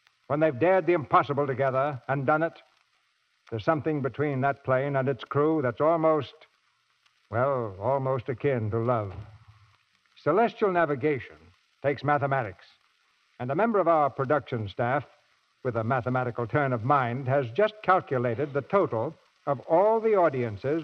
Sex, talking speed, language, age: male, 145 wpm, English, 60-79